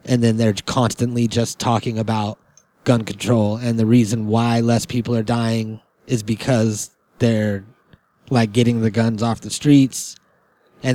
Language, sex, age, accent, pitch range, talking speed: English, male, 30-49, American, 115-140 Hz, 155 wpm